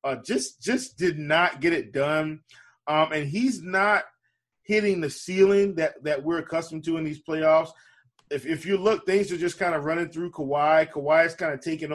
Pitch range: 155-185 Hz